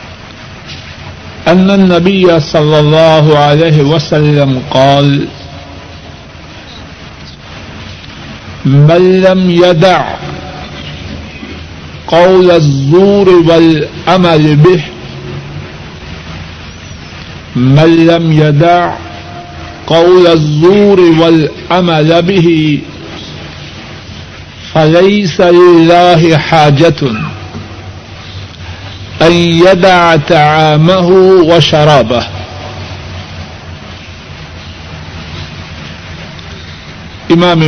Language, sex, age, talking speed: Urdu, male, 60-79, 45 wpm